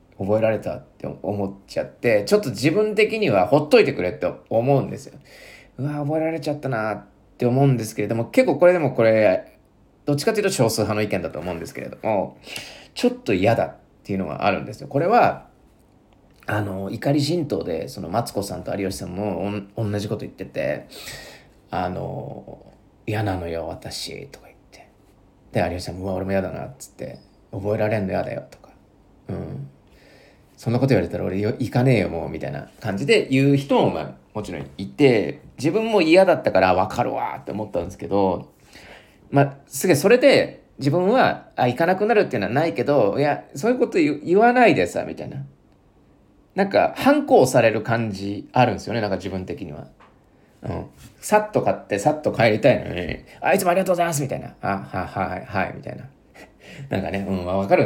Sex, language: male, Japanese